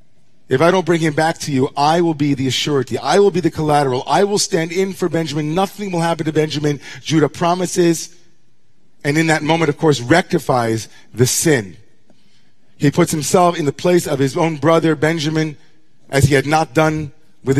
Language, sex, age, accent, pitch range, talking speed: English, male, 40-59, American, 135-170 Hz, 195 wpm